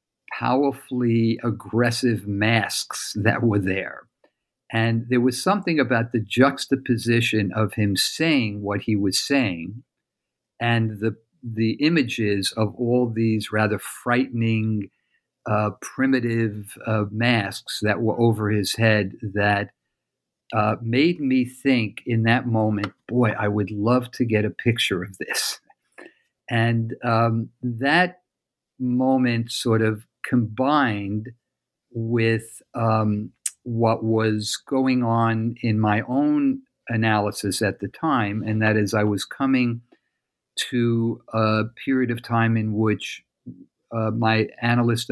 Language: English